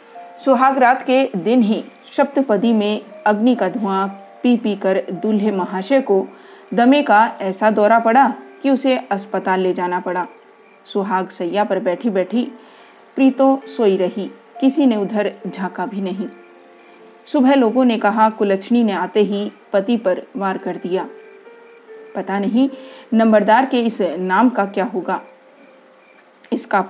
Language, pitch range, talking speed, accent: Hindi, 190-245 Hz, 145 wpm, native